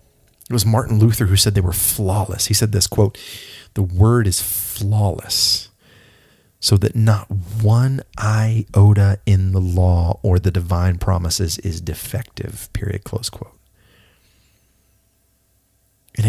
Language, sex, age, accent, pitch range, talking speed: English, male, 30-49, American, 95-110 Hz, 130 wpm